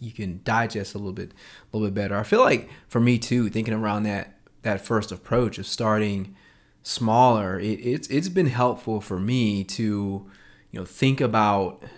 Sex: male